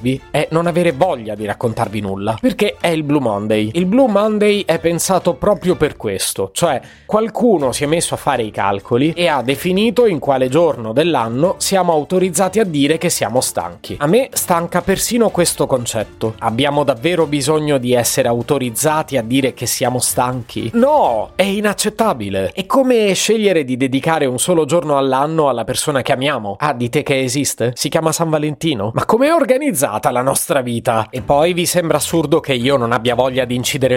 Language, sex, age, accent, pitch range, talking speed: Italian, male, 30-49, native, 125-175 Hz, 180 wpm